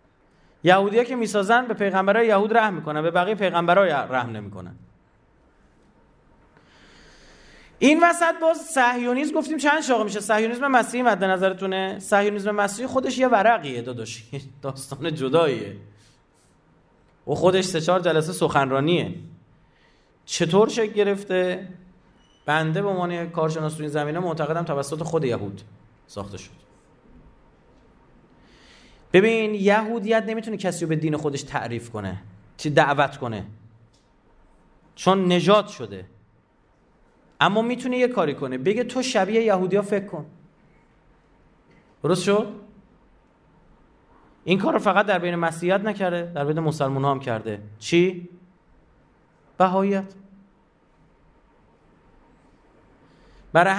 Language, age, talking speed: Persian, 30-49, 115 wpm